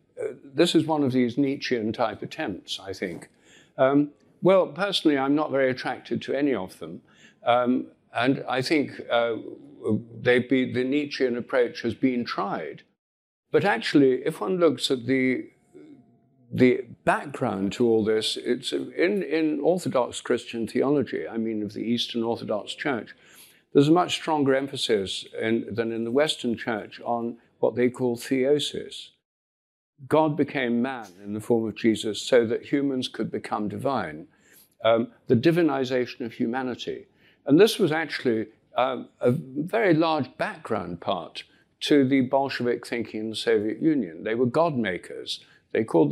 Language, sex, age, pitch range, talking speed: English, male, 60-79, 115-145 Hz, 150 wpm